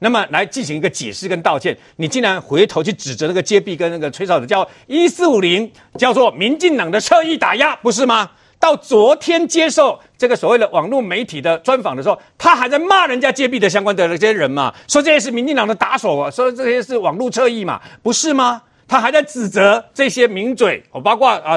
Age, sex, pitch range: 50-69, male, 200-285 Hz